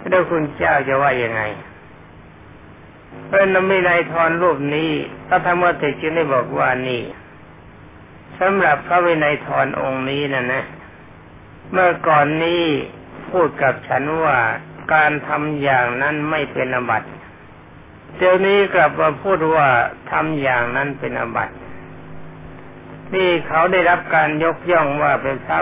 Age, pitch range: 60-79, 130-170 Hz